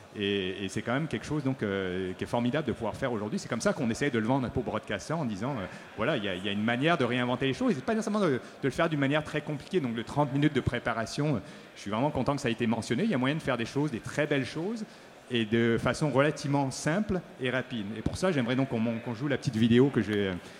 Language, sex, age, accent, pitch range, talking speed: French, male, 40-59, French, 115-145 Hz, 295 wpm